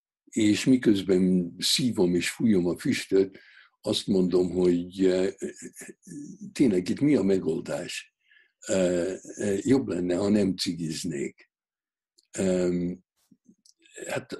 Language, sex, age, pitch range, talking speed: Hungarian, male, 60-79, 90-135 Hz, 90 wpm